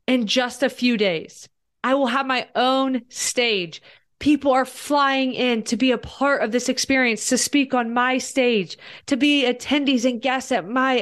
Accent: American